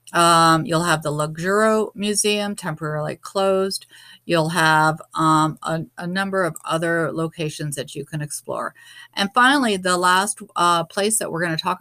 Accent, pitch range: American, 165-205 Hz